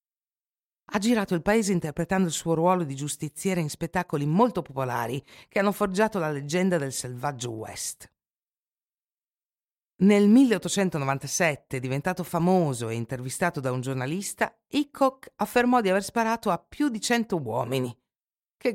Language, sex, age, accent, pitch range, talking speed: Italian, female, 50-69, native, 145-210 Hz, 135 wpm